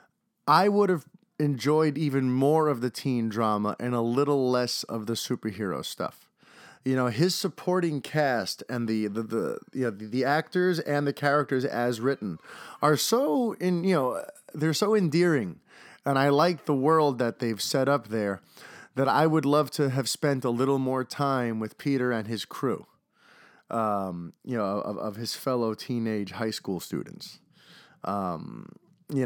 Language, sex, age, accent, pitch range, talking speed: English, male, 30-49, American, 115-155 Hz, 170 wpm